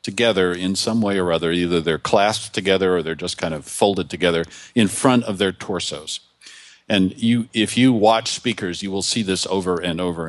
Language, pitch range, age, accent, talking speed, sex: English, 90-115 Hz, 50-69, American, 205 wpm, male